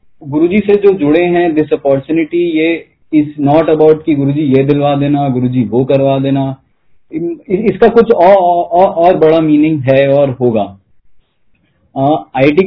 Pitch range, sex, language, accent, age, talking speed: 130-165 Hz, male, Hindi, native, 20-39, 155 wpm